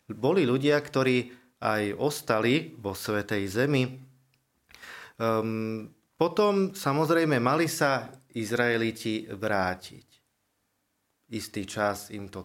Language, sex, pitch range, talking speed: Slovak, male, 110-130 Hz, 85 wpm